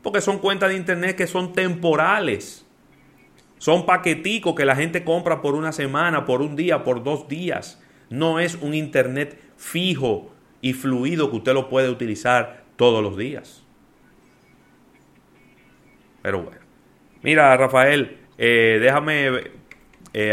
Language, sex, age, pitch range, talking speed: Spanish, male, 30-49, 115-150 Hz, 135 wpm